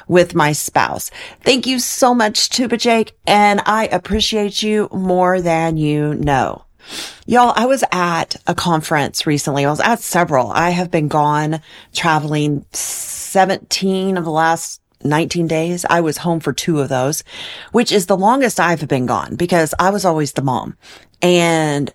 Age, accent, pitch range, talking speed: 30-49, American, 165-225 Hz, 165 wpm